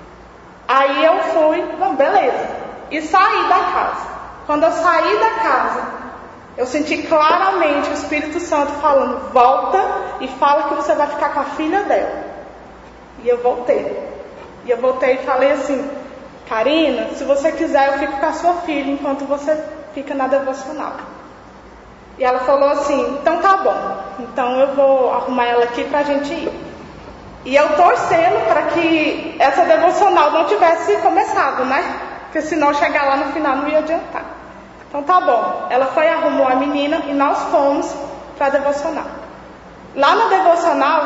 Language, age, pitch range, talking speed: Portuguese, 20-39, 275-325 Hz, 160 wpm